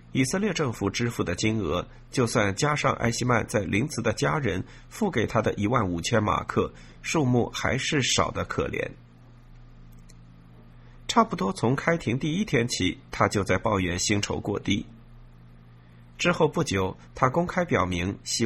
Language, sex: Chinese, male